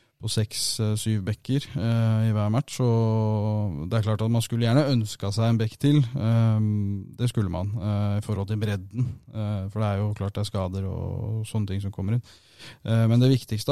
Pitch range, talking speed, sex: 105-115 Hz, 220 wpm, male